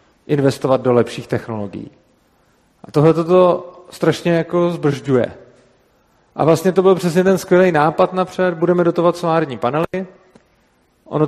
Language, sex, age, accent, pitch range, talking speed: Czech, male, 40-59, native, 145-175 Hz, 130 wpm